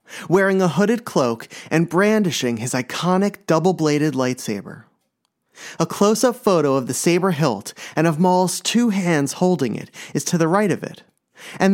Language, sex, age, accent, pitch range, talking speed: English, male, 30-49, American, 140-200 Hz, 160 wpm